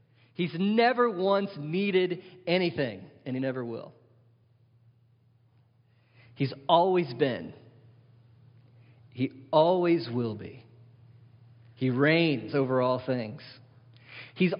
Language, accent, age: English, American, 40-59